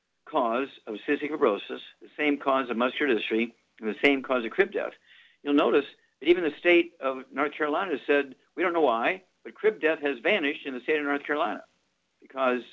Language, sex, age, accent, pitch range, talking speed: English, male, 50-69, American, 115-150 Hz, 205 wpm